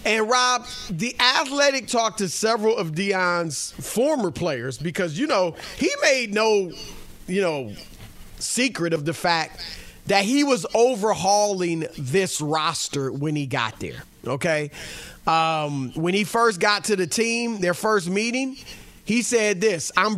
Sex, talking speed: male, 145 wpm